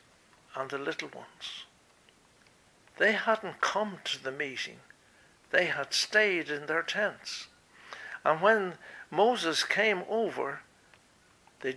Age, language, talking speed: 60-79, English, 110 wpm